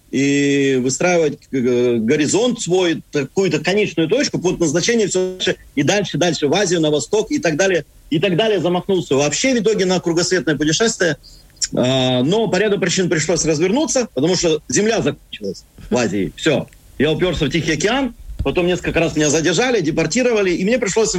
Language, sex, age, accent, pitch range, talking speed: Ukrainian, male, 40-59, native, 150-210 Hz, 160 wpm